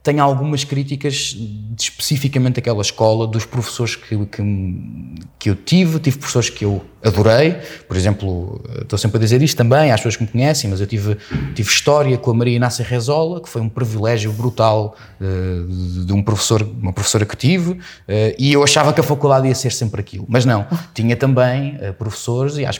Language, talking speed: Portuguese, 185 wpm